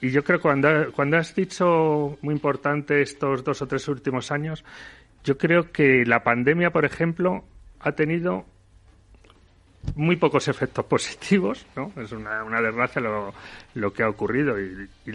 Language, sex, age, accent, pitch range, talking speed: Spanish, male, 40-59, Spanish, 115-155 Hz, 160 wpm